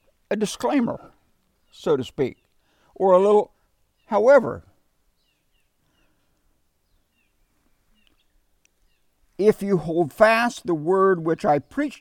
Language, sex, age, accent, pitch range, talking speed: English, male, 60-79, American, 150-205 Hz, 90 wpm